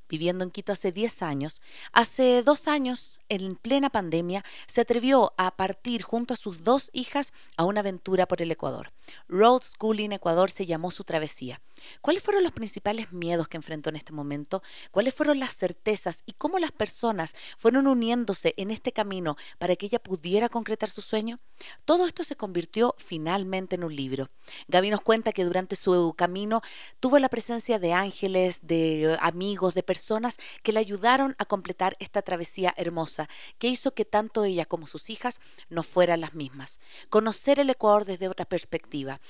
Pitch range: 175-235 Hz